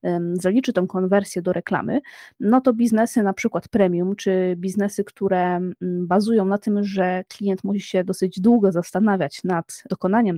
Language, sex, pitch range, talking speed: Polish, female, 190-230 Hz, 150 wpm